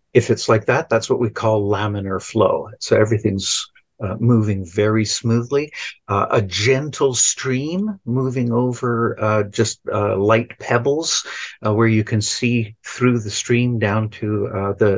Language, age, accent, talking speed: English, 50-69, American, 155 wpm